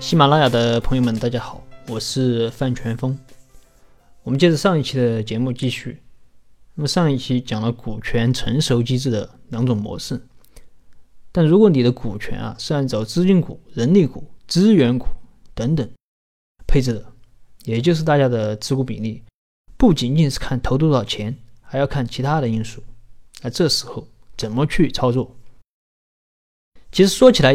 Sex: male